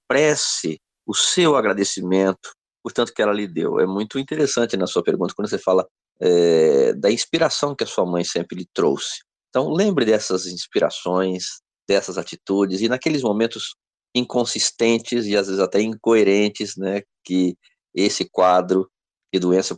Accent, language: Brazilian, Portuguese